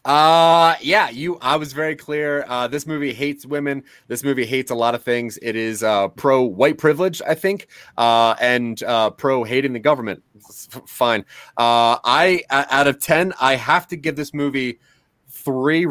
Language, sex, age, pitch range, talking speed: English, male, 30-49, 120-150 Hz, 175 wpm